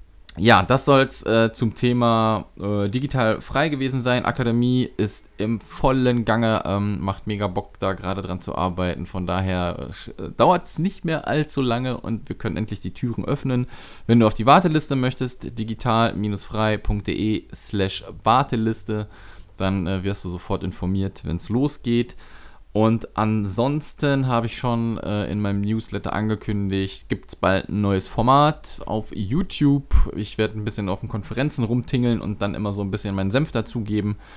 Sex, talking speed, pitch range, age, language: male, 160 wpm, 95-120 Hz, 20-39, German